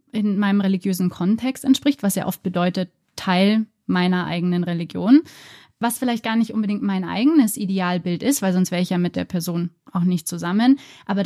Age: 20-39